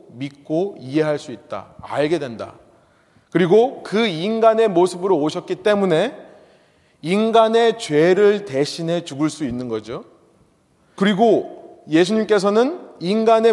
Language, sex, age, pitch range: Korean, male, 30-49, 160-235 Hz